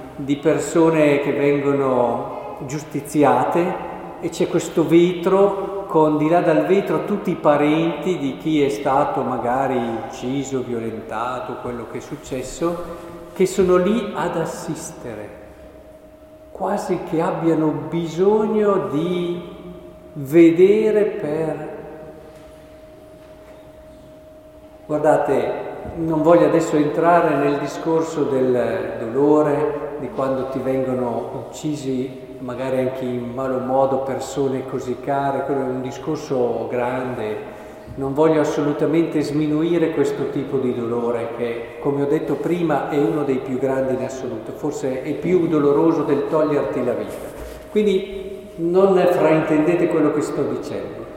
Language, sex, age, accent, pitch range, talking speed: Italian, male, 50-69, native, 135-170 Hz, 120 wpm